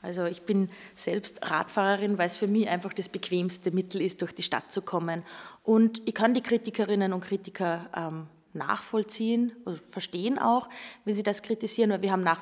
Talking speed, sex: 185 wpm, female